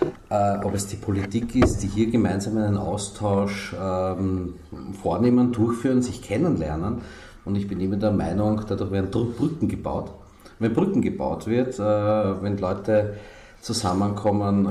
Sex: male